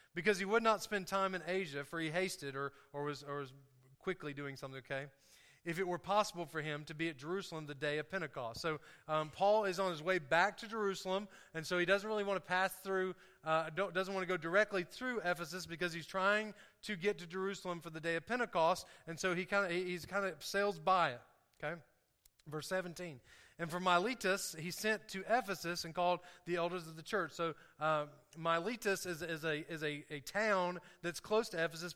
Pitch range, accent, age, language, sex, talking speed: 160-195 Hz, American, 30-49, English, male, 215 wpm